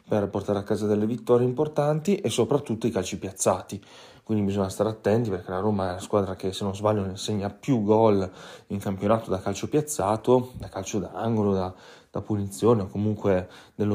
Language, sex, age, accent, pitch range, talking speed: Italian, male, 30-49, native, 100-110 Hz, 185 wpm